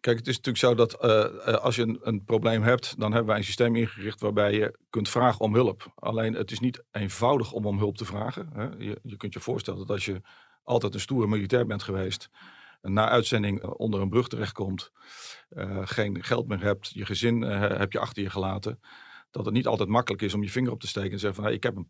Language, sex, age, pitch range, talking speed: Dutch, male, 50-69, 100-120 Hz, 245 wpm